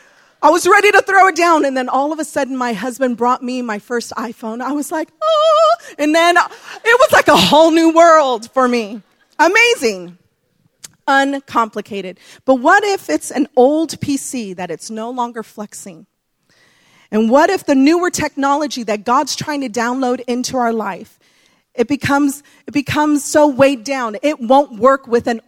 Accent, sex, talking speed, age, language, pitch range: American, female, 175 wpm, 30-49, English, 235-310 Hz